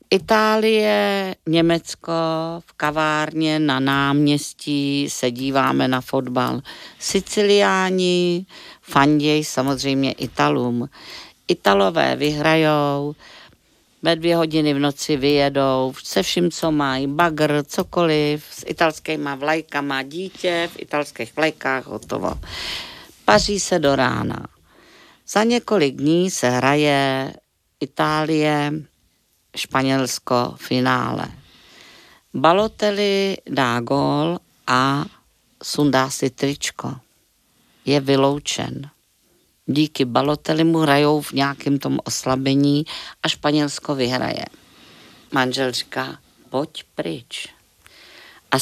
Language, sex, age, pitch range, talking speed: Czech, female, 50-69, 135-160 Hz, 90 wpm